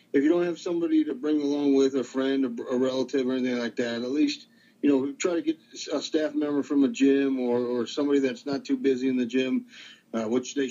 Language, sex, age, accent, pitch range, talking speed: English, male, 50-69, American, 125-155 Hz, 245 wpm